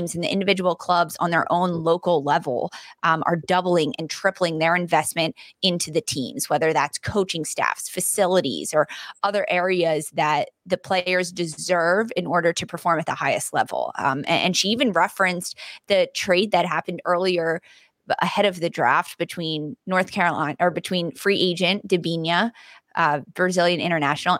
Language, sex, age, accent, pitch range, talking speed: English, female, 20-39, American, 165-190 Hz, 160 wpm